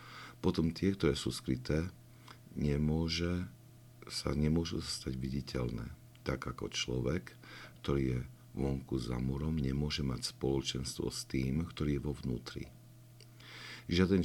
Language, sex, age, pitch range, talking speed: Slovak, male, 60-79, 65-100 Hz, 120 wpm